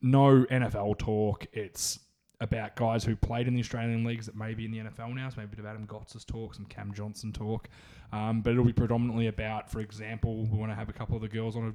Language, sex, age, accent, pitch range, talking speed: English, male, 20-39, Australian, 110-125 Hz, 250 wpm